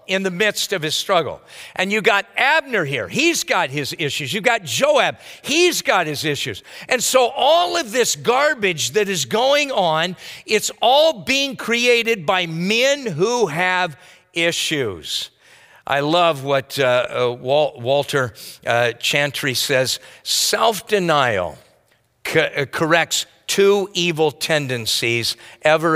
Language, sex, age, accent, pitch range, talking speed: English, male, 50-69, American, 145-230 Hz, 130 wpm